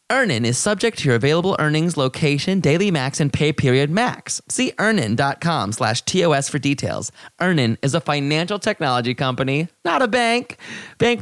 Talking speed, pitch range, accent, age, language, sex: 160 wpm, 130-185 Hz, American, 30-49, English, male